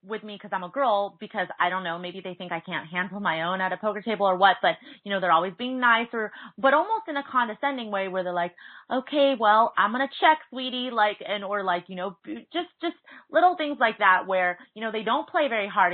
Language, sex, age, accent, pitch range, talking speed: English, female, 30-49, American, 175-220 Hz, 250 wpm